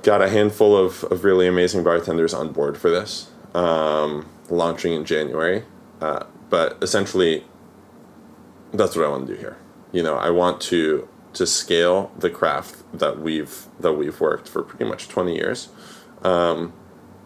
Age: 20-39